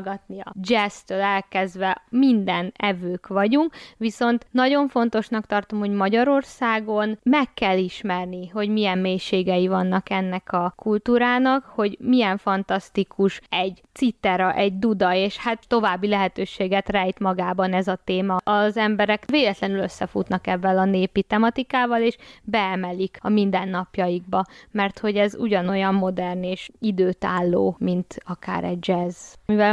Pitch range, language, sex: 190-230 Hz, Hungarian, female